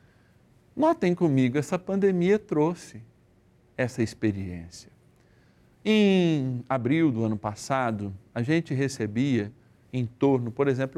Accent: Brazilian